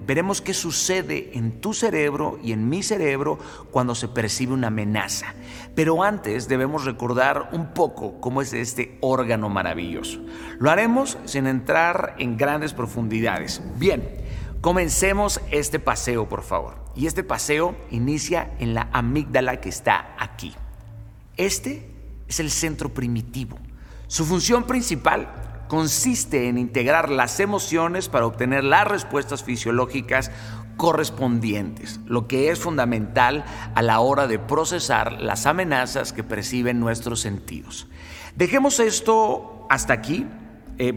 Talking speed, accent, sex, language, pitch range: 130 wpm, Mexican, male, Spanish, 115-150 Hz